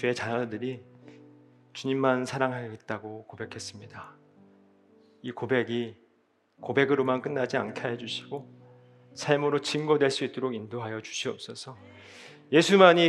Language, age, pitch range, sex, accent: Korean, 40-59, 115-150 Hz, male, native